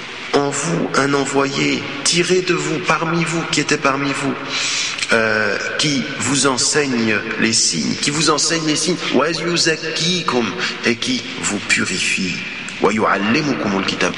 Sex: male